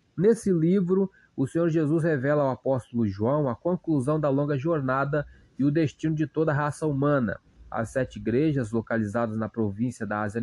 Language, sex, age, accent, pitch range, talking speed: Portuguese, male, 20-39, Brazilian, 120-155 Hz, 175 wpm